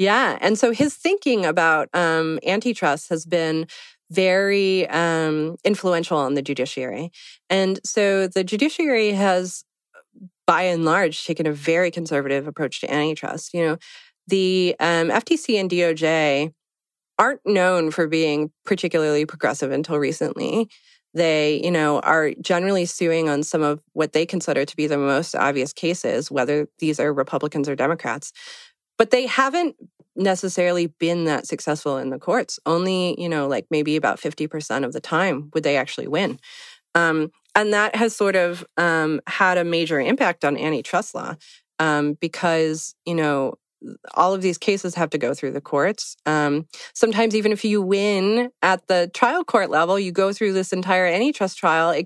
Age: 30-49